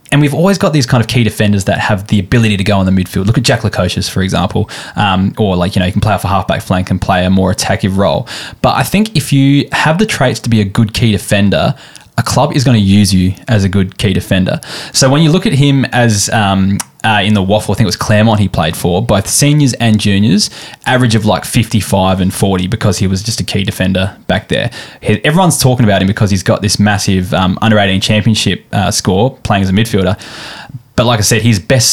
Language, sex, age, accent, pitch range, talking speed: English, male, 10-29, Australian, 95-120 Hz, 250 wpm